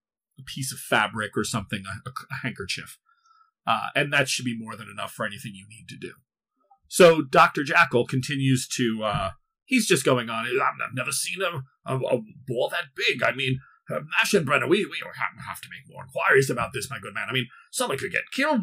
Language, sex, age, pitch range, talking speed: English, male, 40-59, 125-165 Hz, 210 wpm